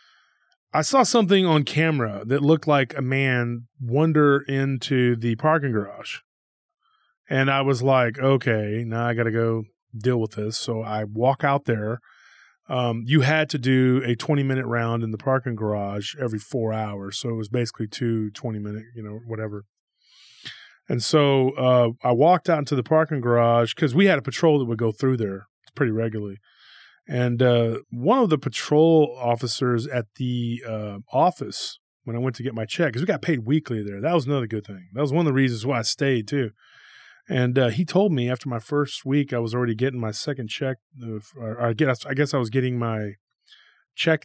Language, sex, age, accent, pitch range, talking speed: English, male, 30-49, American, 115-140 Hz, 195 wpm